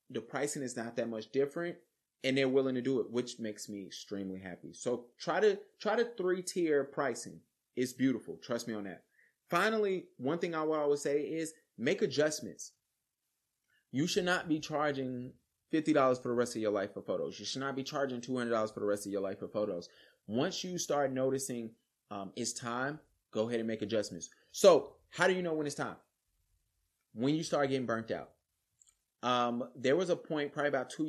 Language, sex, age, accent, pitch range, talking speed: English, male, 30-49, American, 110-135 Hz, 200 wpm